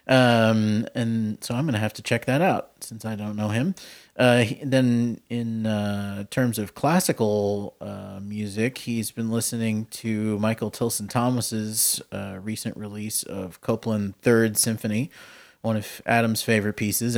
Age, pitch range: 30-49, 105-115 Hz